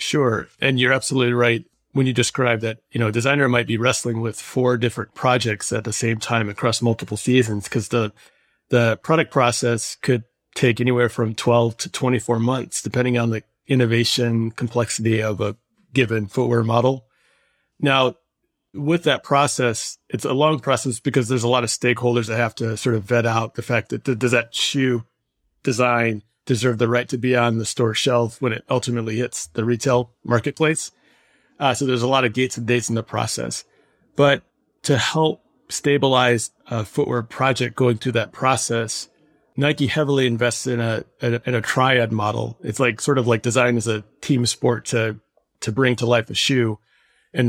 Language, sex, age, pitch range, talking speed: English, male, 40-59, 115-130 Hz, 185 wpm